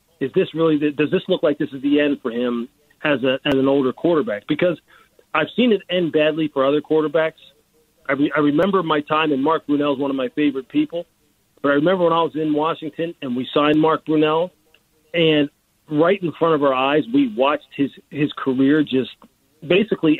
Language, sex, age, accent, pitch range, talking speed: English, male, 40-59, American, 145-180 Hz, 210 wpm